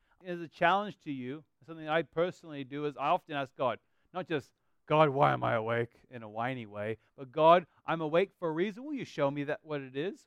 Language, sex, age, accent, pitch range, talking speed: English, male, 40-59, American, 145-180 Hz, 240 wpm